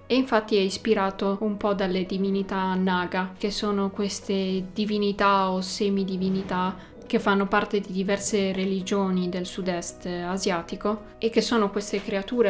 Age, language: 20-39, Italian